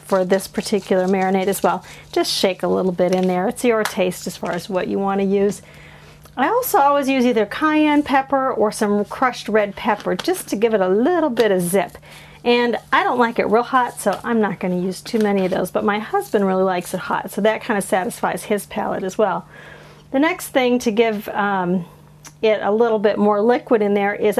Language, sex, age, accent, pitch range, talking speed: English, female, 40-59, American, 190-240 Hz, 225 wpm